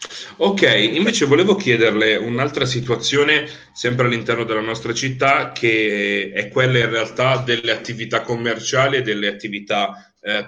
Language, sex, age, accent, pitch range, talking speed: Italian, male, 30-49, native, 110-130 Hz, 130 wpm